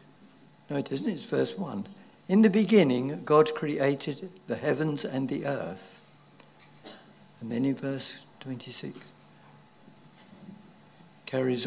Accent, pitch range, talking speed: British, 125-175 Hz, 115 wpm